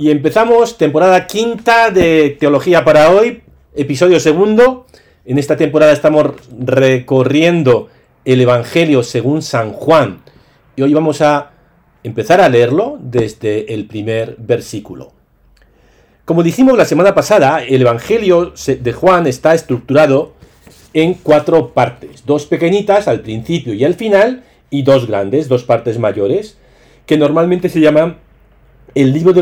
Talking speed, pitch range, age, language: 135 wpm, 125-170 Hz, 40-59, Spanish